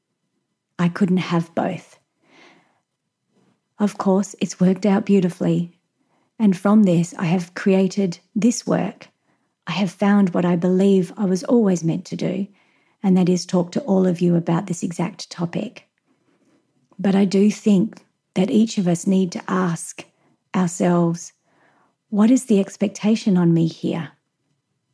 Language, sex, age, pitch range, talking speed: English, female, 30-49, 170-210 Hz, 145 wpm